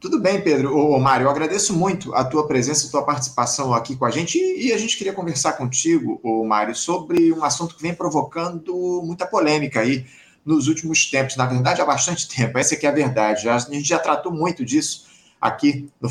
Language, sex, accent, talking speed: Portuguese, male, Brazilian, 210 wpm